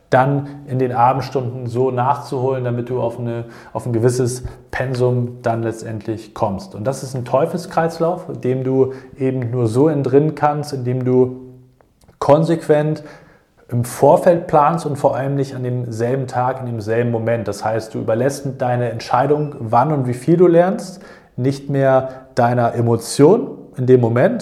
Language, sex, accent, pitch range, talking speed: German, male, German, 120-145 Hz, 155 wpm